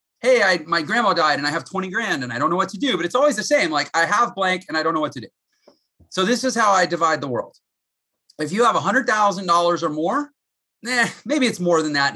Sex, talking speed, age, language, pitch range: male, 275 wpm, 30-49, English, 130-200 Hz